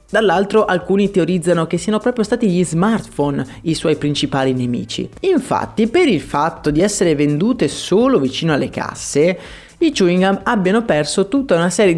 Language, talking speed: Italian, 160 wpm